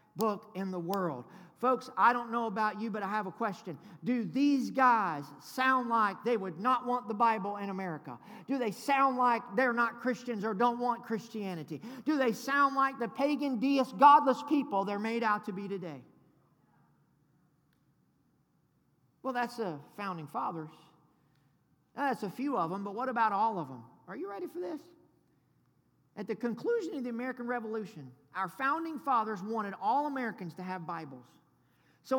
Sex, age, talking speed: male, 50-69, 170 wpm